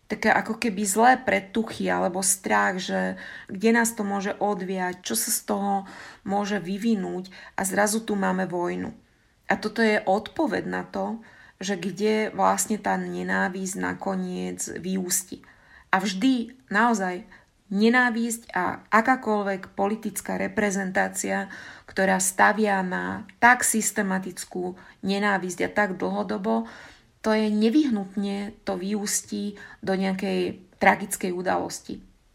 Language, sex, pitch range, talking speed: Slovak, female, 180-215 Hz, 115 wpm